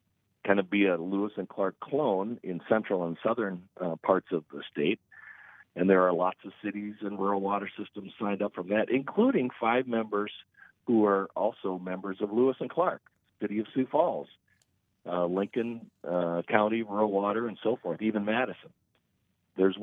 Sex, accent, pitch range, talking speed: male, American, 90-110 Hz, 175 wpm